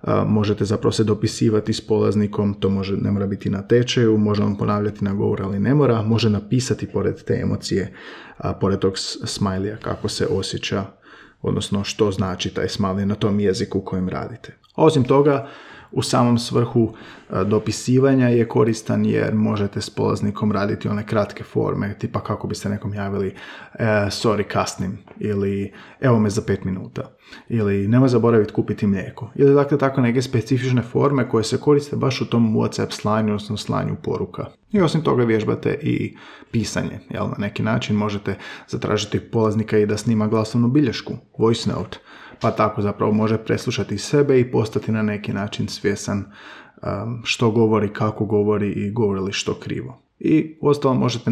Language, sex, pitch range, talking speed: Croatian, male, 105-120 Hz, 165 wpm